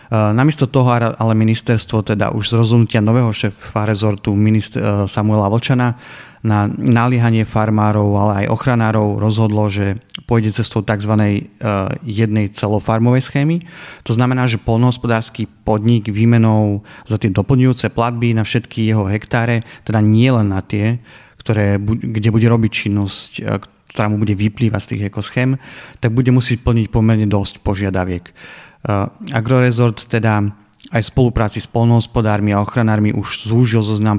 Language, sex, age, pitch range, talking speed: Slovak, male, 30-49, 105-120 Hz, 135 wpm